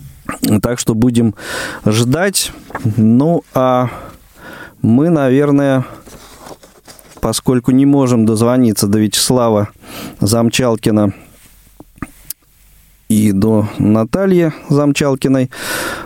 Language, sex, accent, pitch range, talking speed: Russian, male, native, 110-140 Hz, 70 wpm